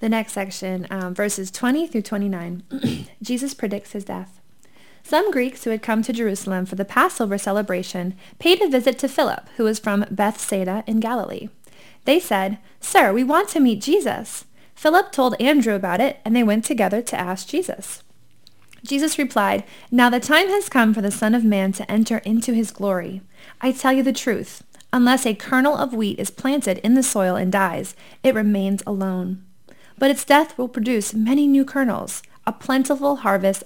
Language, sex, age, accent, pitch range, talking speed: English, female, 20-39, American, 195-260 Hz, 180 wpm